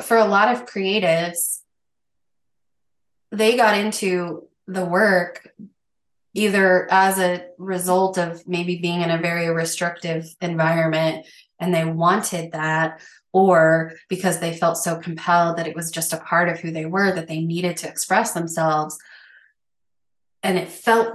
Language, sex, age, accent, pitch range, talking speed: English, female, 20-39, American, 160-185 Hz, 145 wpm